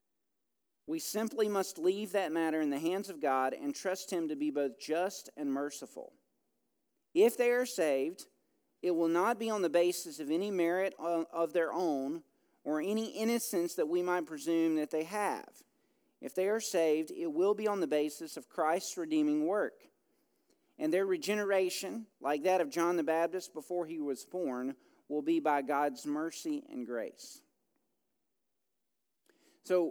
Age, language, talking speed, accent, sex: 40-59, English, 165 wpm, American, male